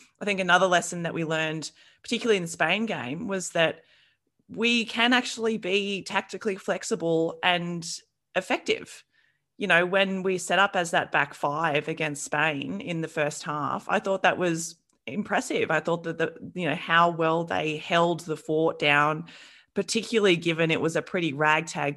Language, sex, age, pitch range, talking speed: English, female, 30-49, 155-200 Hz, 170 wpm